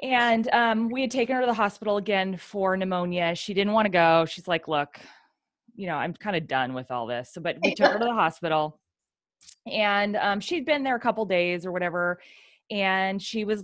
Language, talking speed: English, 225 wpm